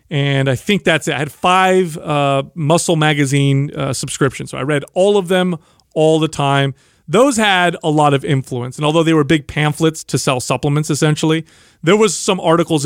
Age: 30-49